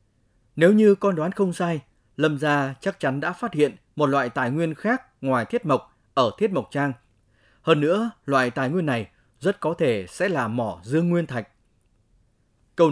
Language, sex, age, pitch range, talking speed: Vietnamese, male, 20-39, 115-175 Hz, 190 wpm